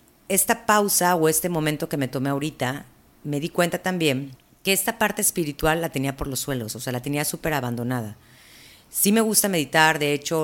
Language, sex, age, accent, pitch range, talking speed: Spanish, female, 40-59, Mexican, 135-180 Hz, 195 wpm